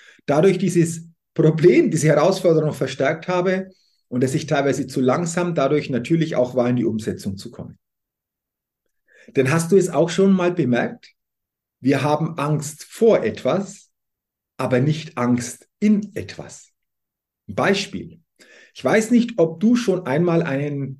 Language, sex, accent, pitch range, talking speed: German, male, German, 135-185 Hz, 140 wpm